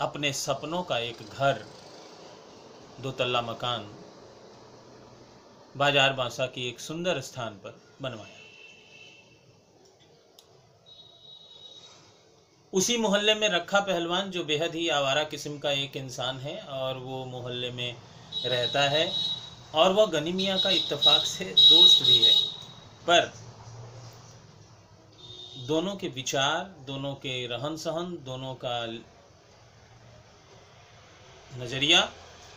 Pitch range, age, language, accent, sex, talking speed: 125-160 Hz, 40-59, Hindi, native, male, 100 wpm